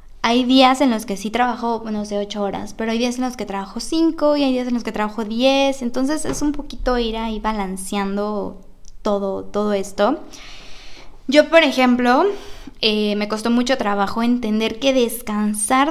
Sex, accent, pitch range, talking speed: female, Mexican, 205-245 Hz, 185 wpm